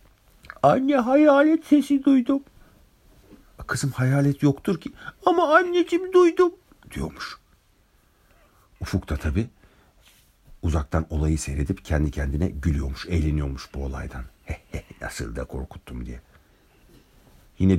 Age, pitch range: 60-79, 75-100 Hz